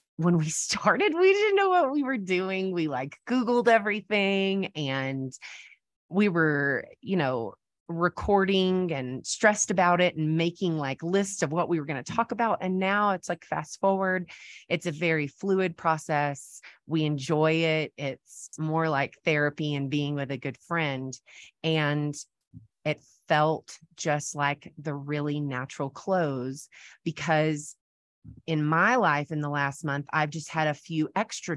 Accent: American